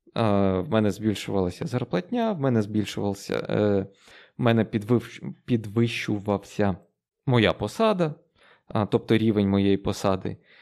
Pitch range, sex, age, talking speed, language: 105-145 Hz, male, 20-39, 85 wpm, Ukrainian